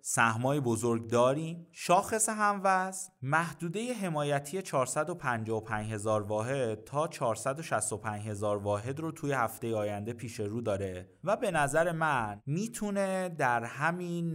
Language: Persian